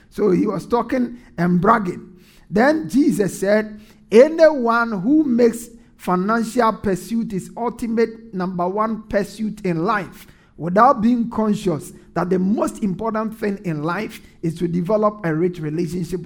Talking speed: 135 wpm